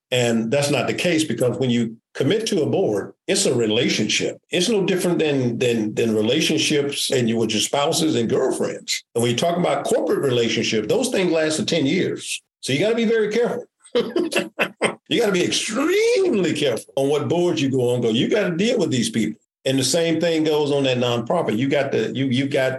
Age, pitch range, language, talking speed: 50-69, 135-185 Hz, English, 220 wpm